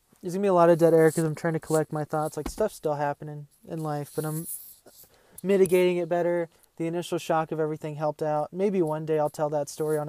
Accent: American